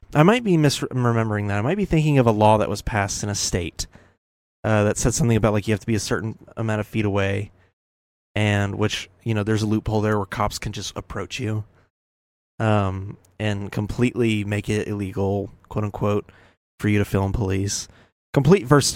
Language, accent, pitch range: English, American, 95-120 Hz